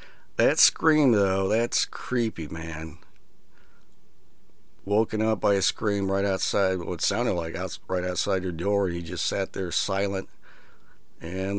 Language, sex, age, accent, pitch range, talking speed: English, male, 50-69, American, 90-105 Hz, 145 wpm